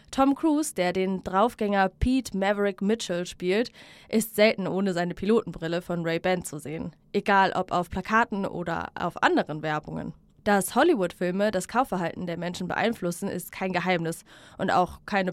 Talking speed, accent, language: 155 wpm, German, German